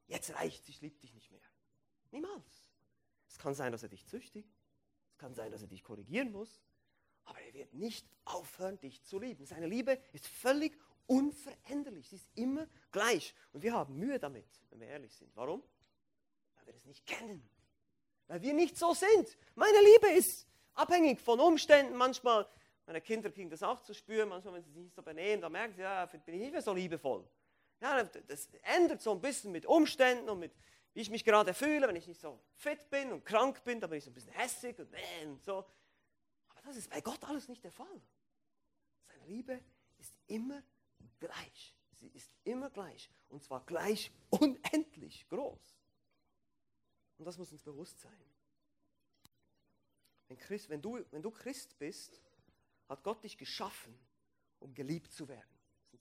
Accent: German